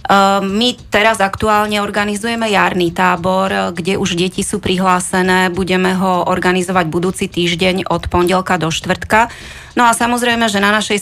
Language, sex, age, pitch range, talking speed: Slovak, female, 30-49, 175-200 Hz, 140 wpm